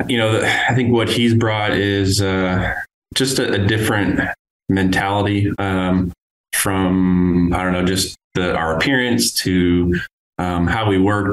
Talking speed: 145 wpm